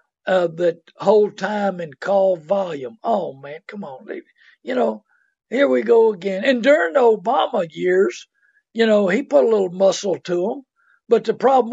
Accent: American